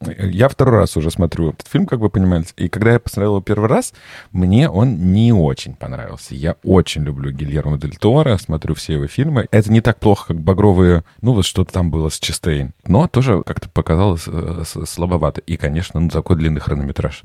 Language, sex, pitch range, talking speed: Russian, male, 80-100 Hz, 195 wpm